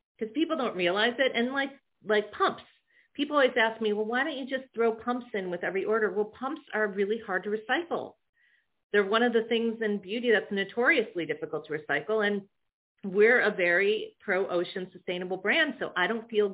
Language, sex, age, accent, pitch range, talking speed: English, female, 40-59, American, 180-230 Hz, 195 wpm